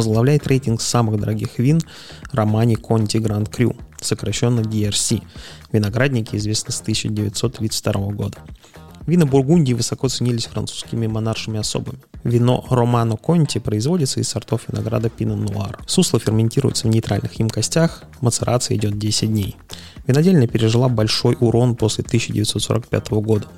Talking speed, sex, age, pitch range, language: 120 wpm, male, 20-39, 110-125 Hz, Russian